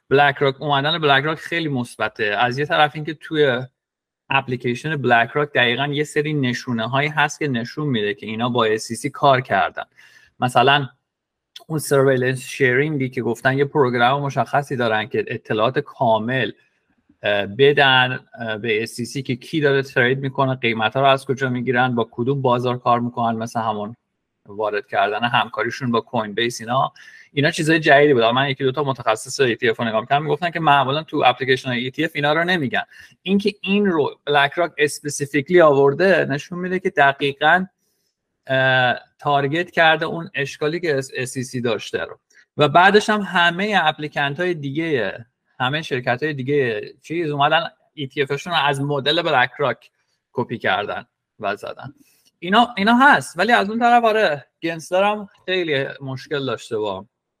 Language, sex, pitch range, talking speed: Persian, male, 125-155 Hz, 150 wpm